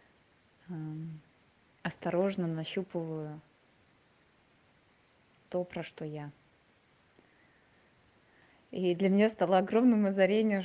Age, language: 20-39, Russian